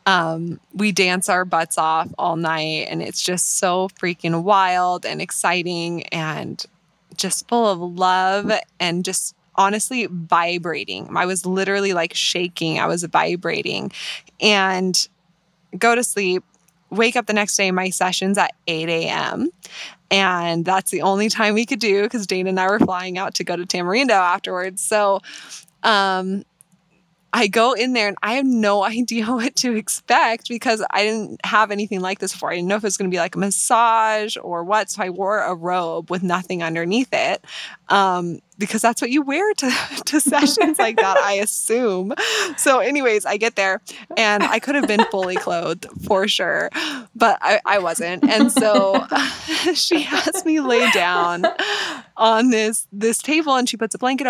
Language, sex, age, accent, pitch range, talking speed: English, female, 20-39, American, 175-225 Hz, 175 wpm